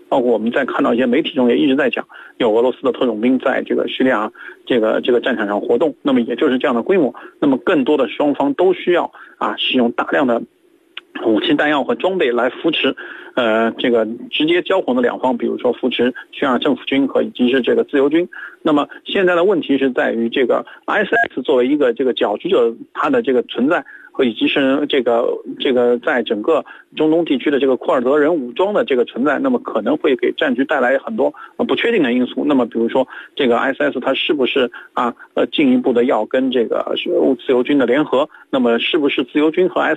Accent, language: native, Chinese